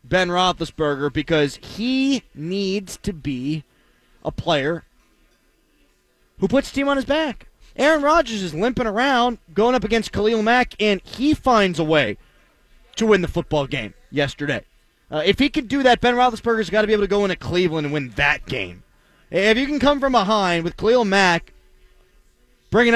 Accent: American